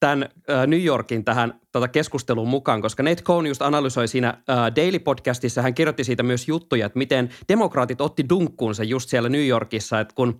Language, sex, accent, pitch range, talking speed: Finnish, male, native, 120-150 Hz, 185 wpm